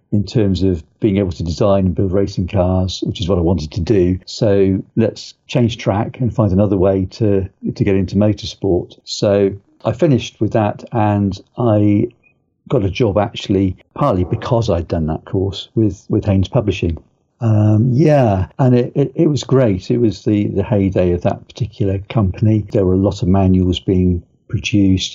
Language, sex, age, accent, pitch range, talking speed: English, male, 50-69, British, 95-110 Hz, 185 wpm